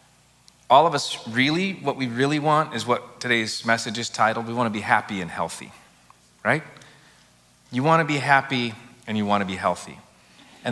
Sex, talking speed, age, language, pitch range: male, 190 wpm, 30-49, English, 105-135 Hz